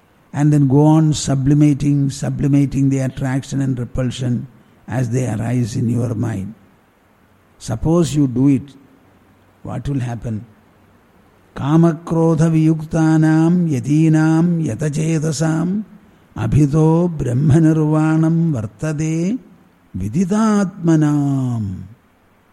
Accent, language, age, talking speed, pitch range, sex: Indian, English, 60-79, 80 wpm, 125-165 Hz, male